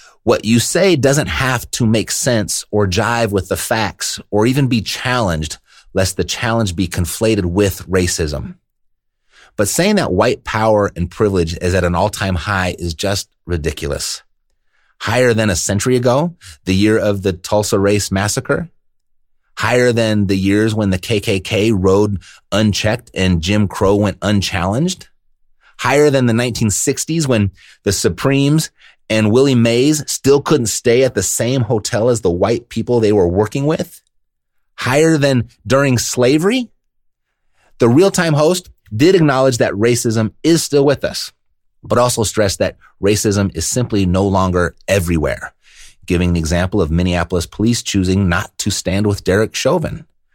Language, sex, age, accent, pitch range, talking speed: English, male, 30-49, American, 95-125 Hz, 155 wpm